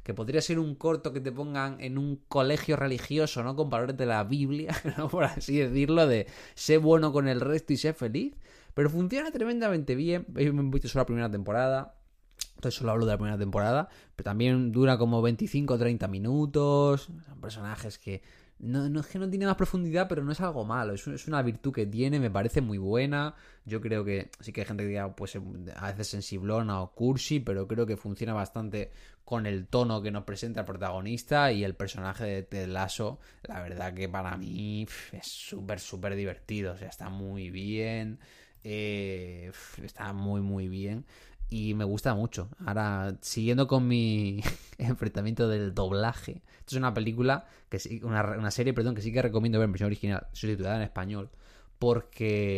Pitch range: 100-140 Hz